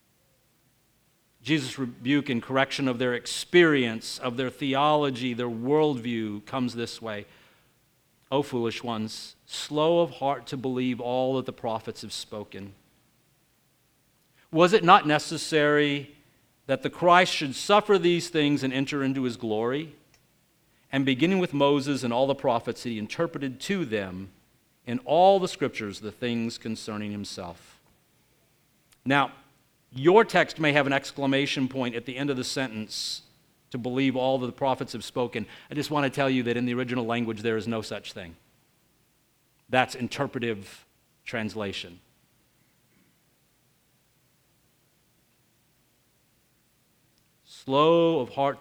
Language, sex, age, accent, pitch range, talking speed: English, male, 50-69, American, 115-145 Hz, 135 wpm